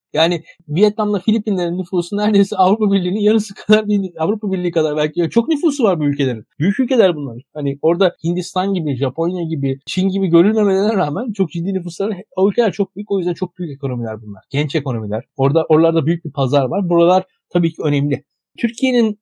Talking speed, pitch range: 180 wpm, 160-210 Hz